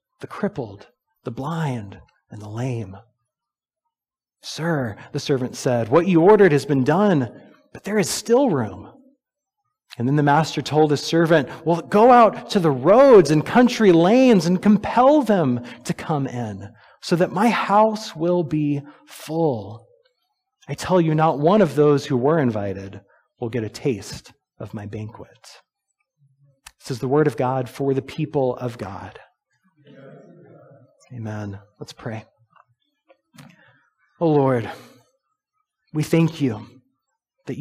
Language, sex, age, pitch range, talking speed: English, male, 30-49, 125-180 Hz, 140 wpm